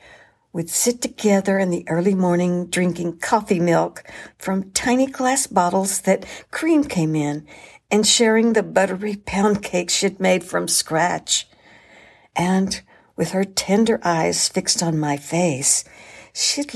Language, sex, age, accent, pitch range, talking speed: English, female, 60-79, American, 190-245 Hz, 135 wpm